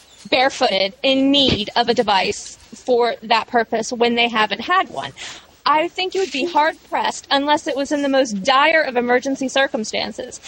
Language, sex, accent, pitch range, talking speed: English, female, American, 235-315 Hz, 170 wpm